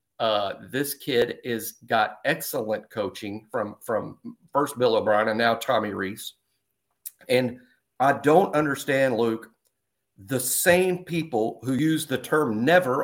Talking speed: 135 wpm